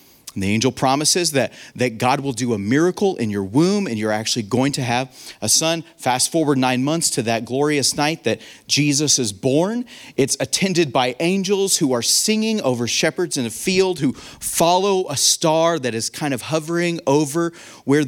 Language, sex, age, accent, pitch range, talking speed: English, male, 30-49, American, 120-165 Hz, 190 wpm